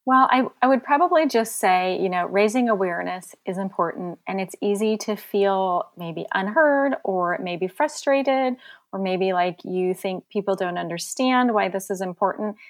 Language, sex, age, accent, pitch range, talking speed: English, female, 30-49, American, 185-240 Hz, 165 wpm